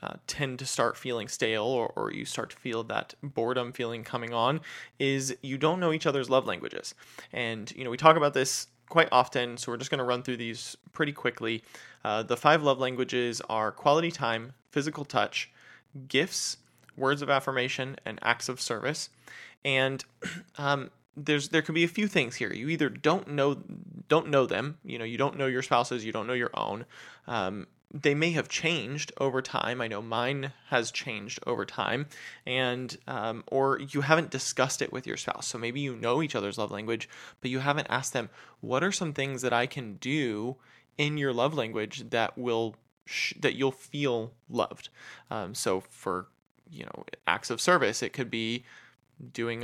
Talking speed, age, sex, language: 190 wpm, 20-39, male, English